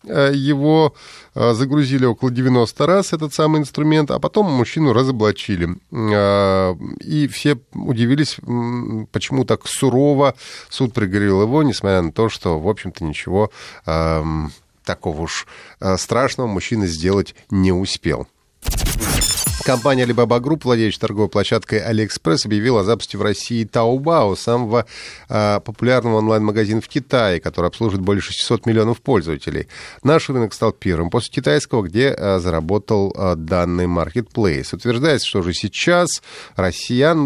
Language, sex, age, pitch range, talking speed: Russian, male, 30-49, 100-130 Hz, 125 wpm